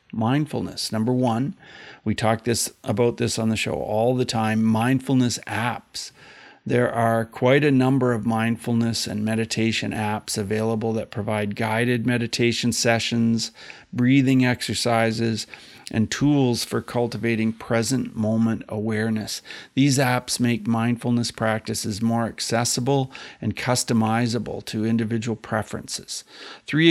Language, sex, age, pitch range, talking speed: English, male, 50-69, 110-125 Hz, 120 wpm